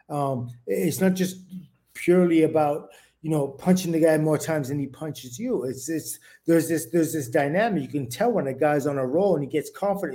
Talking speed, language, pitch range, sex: 220 wpm, English, 140-180 Hz, male